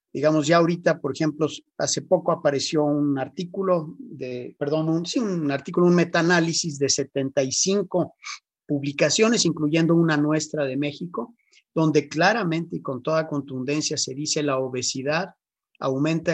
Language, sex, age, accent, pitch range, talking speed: Spanish, male, 50-69, Mexican, 140-175 Hz, 135 wpm